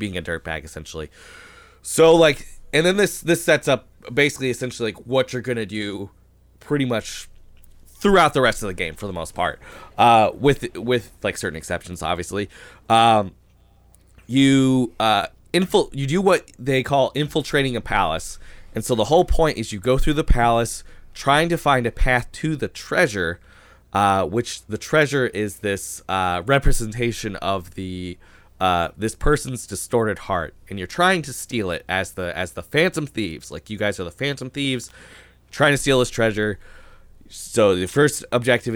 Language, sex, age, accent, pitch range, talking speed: English, male, 20-39, American, 95-140 Hz, 175 wpm